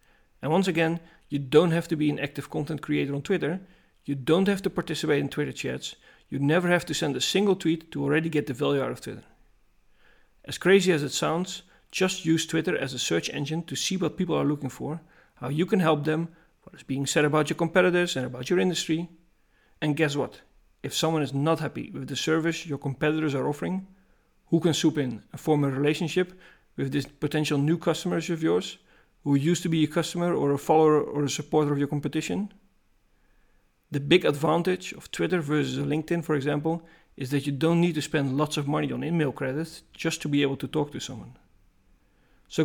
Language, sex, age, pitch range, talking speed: English, male, 40-59, 145-165 Hz, 210 wpm